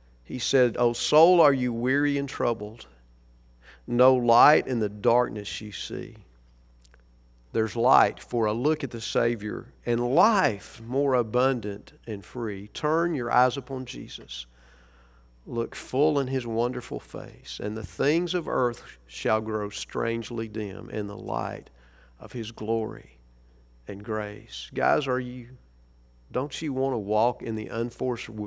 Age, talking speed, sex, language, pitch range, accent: 50-69, 145 wpm, male, English, 100-125 Hz, American